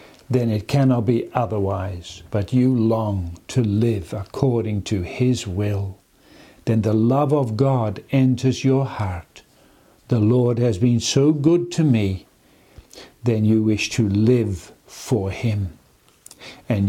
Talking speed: 135 wpm